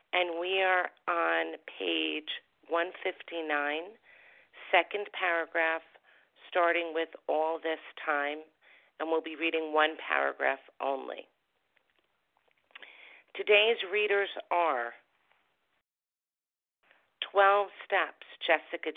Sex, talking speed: female, 80 wpm